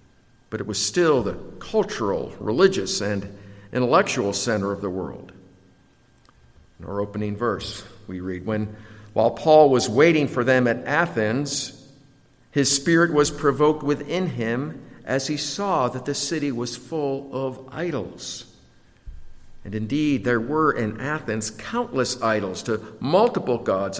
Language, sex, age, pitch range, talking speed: English, male, 50-69, 105-140 Hz, 140 wpm